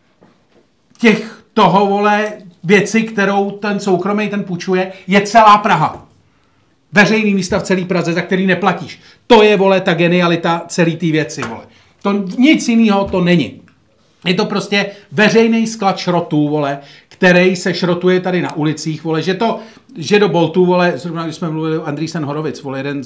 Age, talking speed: 40-59, 160 wpm